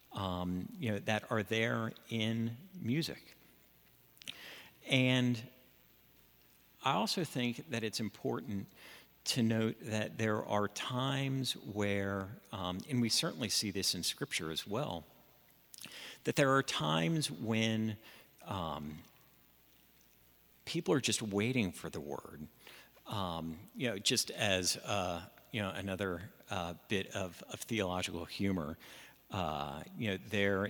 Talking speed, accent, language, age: 125 wpm, American, English, 50-69